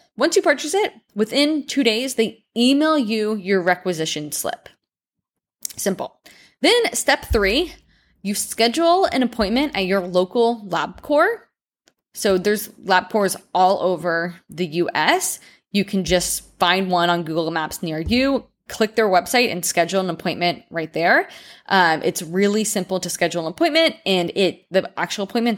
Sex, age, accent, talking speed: female, 20-39, American, 155 wpm